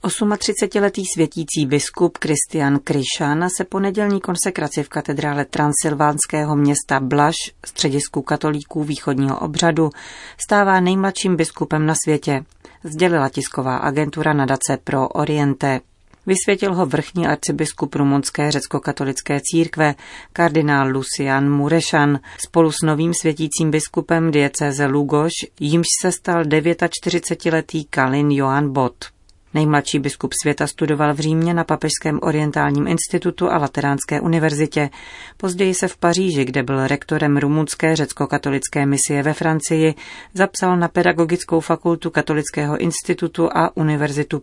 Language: Czech